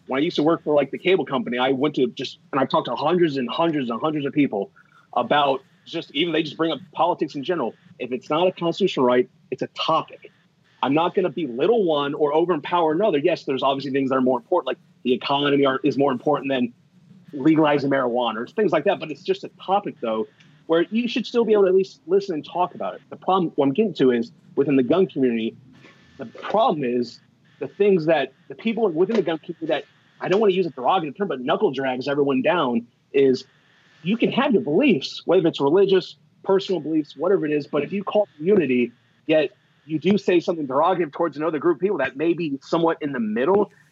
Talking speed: 230 wpm